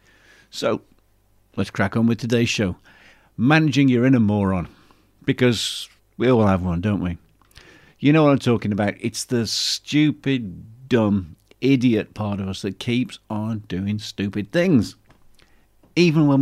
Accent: British